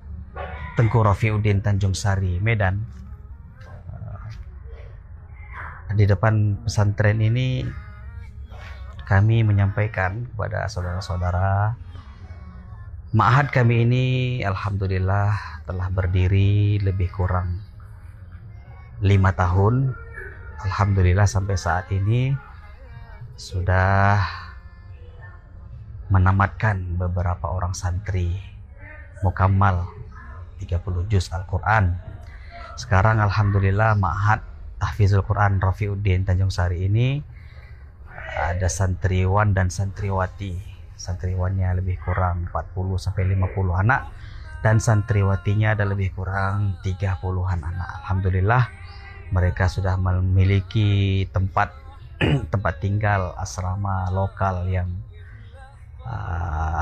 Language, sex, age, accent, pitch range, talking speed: Indonesian, male, 30-49, native, 90-105 Hz, 75 wpm